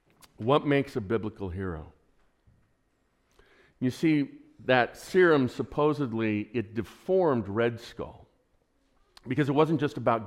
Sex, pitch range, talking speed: male, 95-120 Hz, 110 wpm